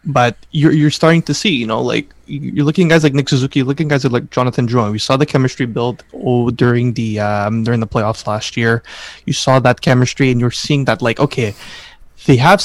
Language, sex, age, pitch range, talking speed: English, male, 20-39, 120-145 Hz, 230 wpm